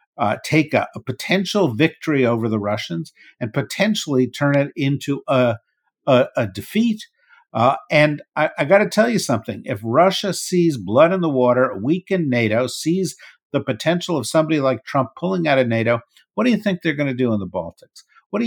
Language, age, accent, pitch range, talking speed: English, 50-69, American, 115-170 Hz, 195 wpm